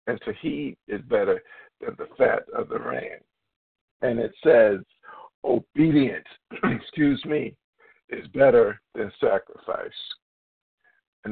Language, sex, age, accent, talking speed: English, male, 50-69, American, 115 wpm